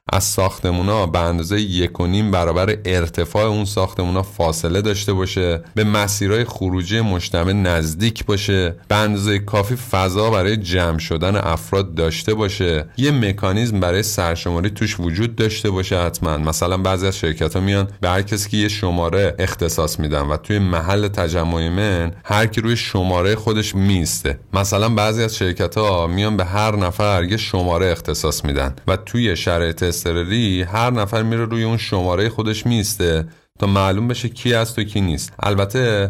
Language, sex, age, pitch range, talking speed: Persian, male, 30-49, 85-110 Hz, 150 wpm